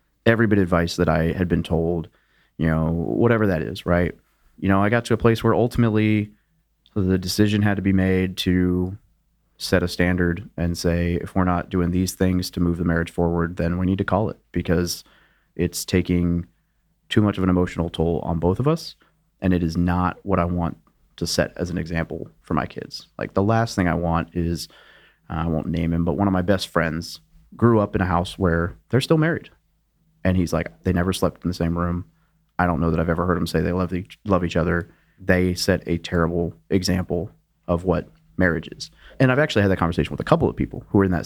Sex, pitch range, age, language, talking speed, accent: male, 85-105 Hz, 30-49, English, 225 wpm, American